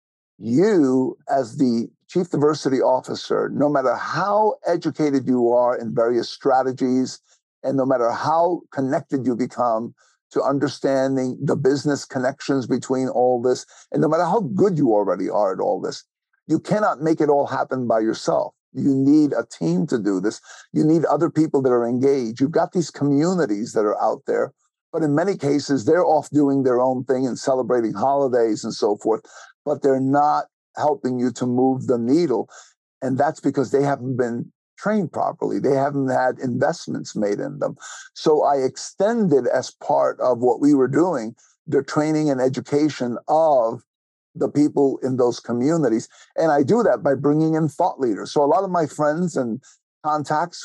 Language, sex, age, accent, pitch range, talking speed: English, male, 50-69, American, 125-150 Hz, 175 wpm